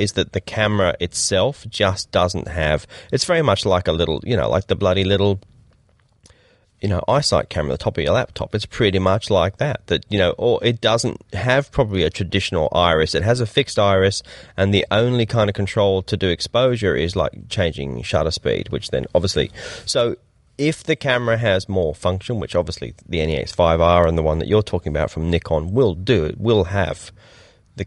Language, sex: English, male